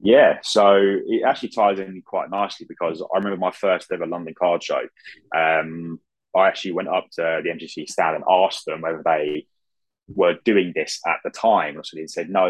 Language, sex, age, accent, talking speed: English, male, 20-39, British, 195 wpm